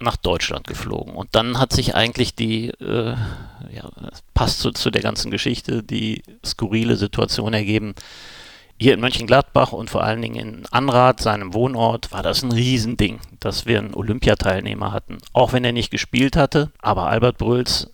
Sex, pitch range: male, 105-120 Hz